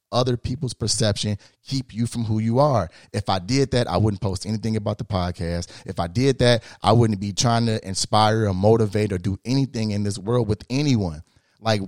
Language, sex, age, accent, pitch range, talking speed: English, male, 30-49, American, 100-125 Hz, 205 wpm